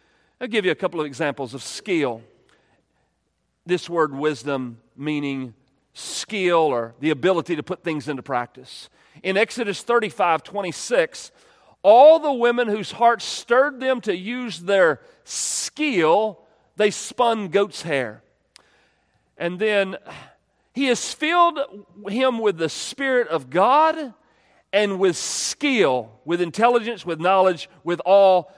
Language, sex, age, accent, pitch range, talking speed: English, male, 40-59, American, 165-240 Hz, 130 wpm